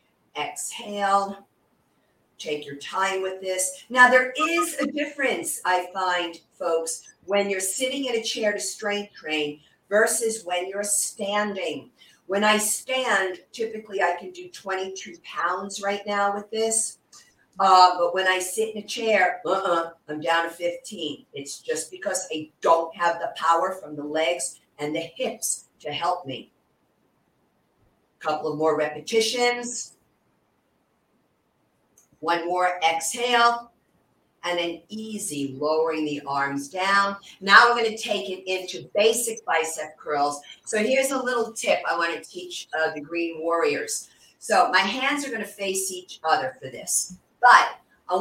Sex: female